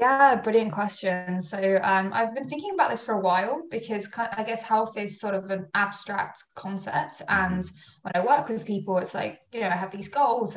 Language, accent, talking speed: English, British, 220 wpm